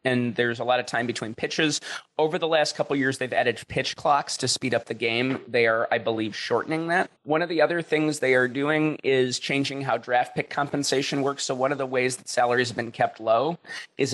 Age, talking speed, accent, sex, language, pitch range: 30-49, 240 wpm, American, male, English, 120-145 Hz